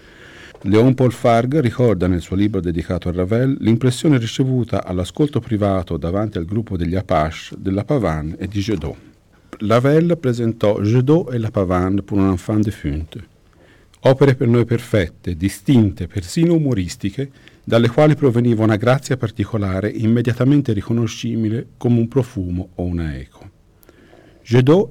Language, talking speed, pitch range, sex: Italian, 135 wpm, 95-130 Hz, male